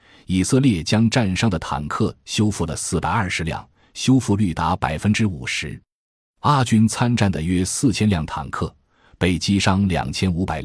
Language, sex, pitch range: Chinese, male, 80-115 Hz